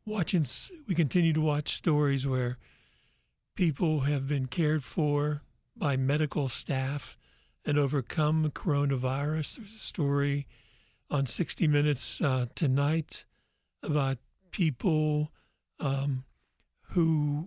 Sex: male